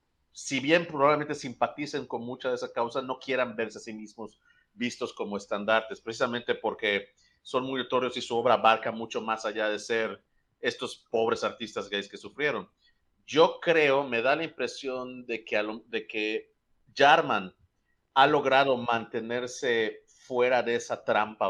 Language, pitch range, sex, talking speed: Spanish, 115-140 Hz, male, 155 wpm